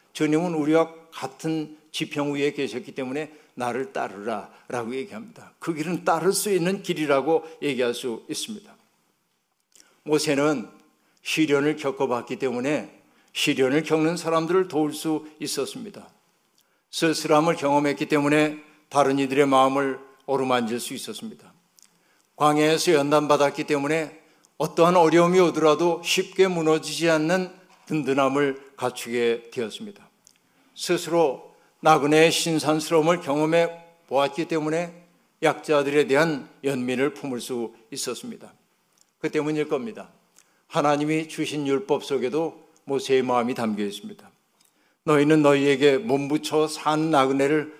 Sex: male